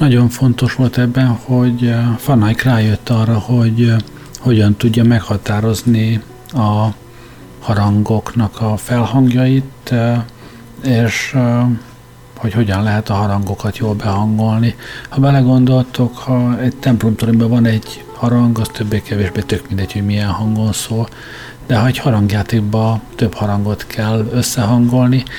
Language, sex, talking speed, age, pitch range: Hungarian, male, 115 wpm, 50-69, 105-125 Hz